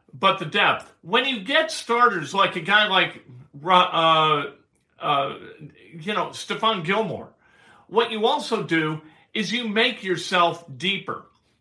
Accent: American